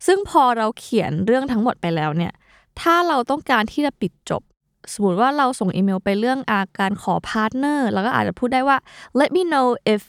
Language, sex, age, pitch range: Thai, female, 20-39, 190-250 Hz